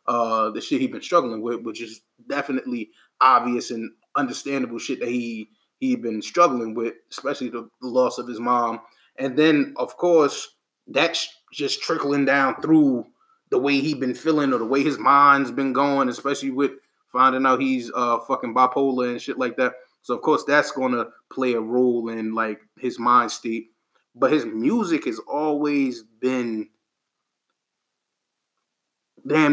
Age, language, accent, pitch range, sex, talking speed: 20-39, English, American, 120-145 Hz, male, 165 wpm